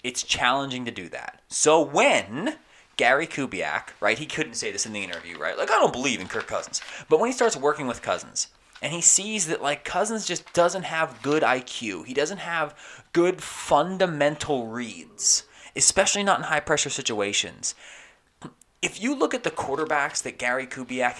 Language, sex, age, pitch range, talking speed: English, male, 20-39, 115-170 Hz, 180 wpm